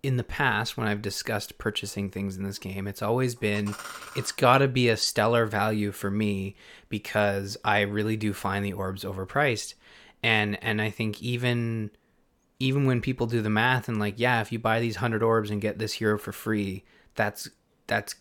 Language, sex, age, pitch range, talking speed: English, male, 20-39, 105-125 Hz, 195 wpm